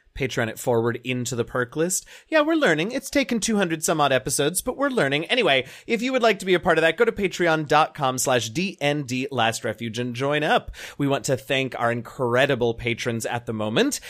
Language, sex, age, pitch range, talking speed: English, male, 30-49, 120-185 Hz, 205 wpm